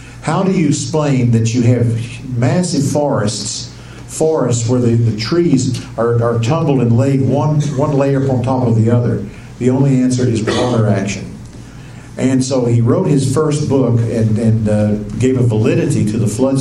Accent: American